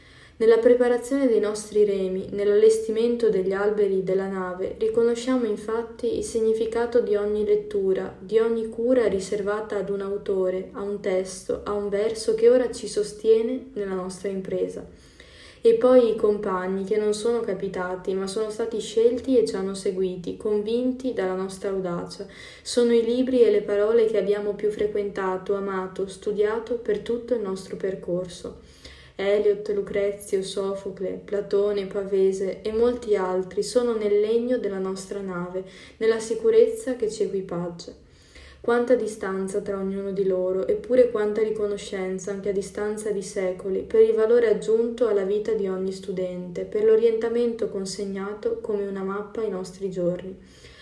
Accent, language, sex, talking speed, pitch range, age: native, Italian, female, 150 wpm, 195-230 Hz, 20-39